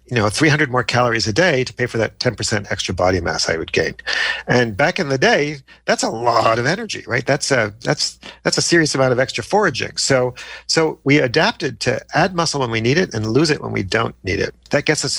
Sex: male